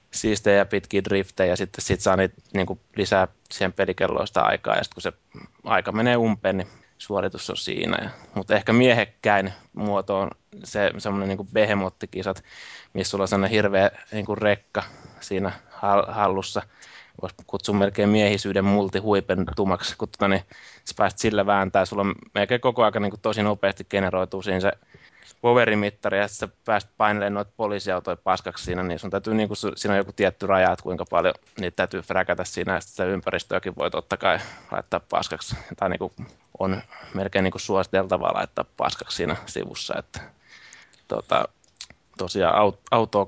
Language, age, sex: Finnish, 20-39, male